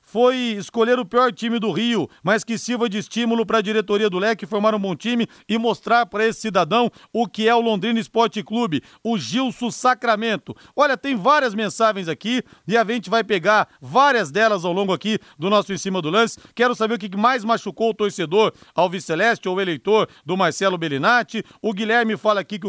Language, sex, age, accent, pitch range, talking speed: Portuguese, male, 40-59, Brazilian, 200-240 Hz, 205 wpm